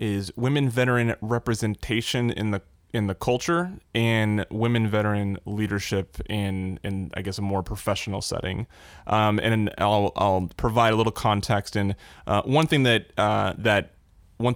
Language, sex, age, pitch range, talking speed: English, male, 20-39, 100-115 Hz, 155 wpm